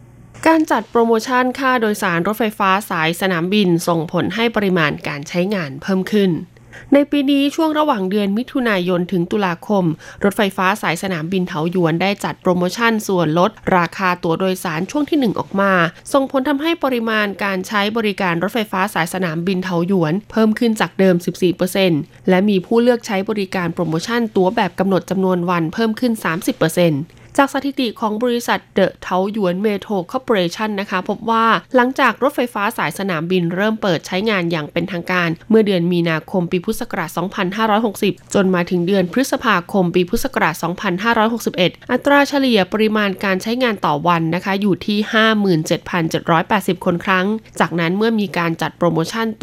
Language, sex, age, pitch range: Thai, female, 20-39, 175-220 Hz